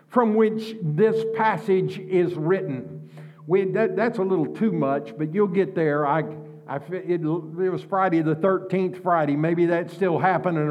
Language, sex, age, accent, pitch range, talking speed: English, male, 60-79, American, 180-230 Hz, 170 wpm